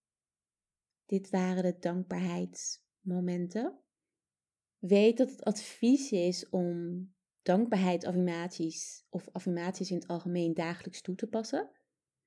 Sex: female